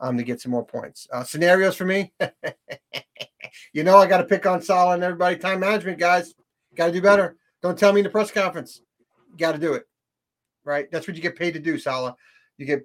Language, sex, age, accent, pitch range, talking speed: English, male, 40-59, American, 155-195 Hz, 230 wpm